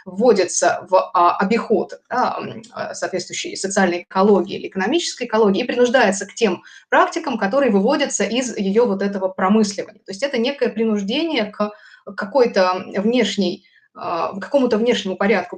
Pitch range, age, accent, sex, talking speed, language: 195-245 Hz, 20-39, native, female, 130 wpm, Russian